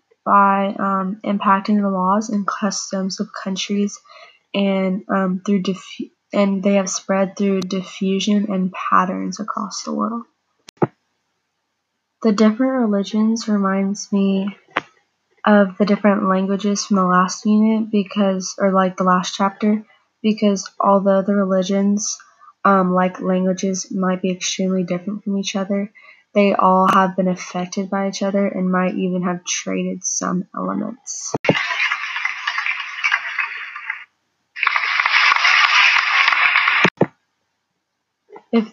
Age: 20-39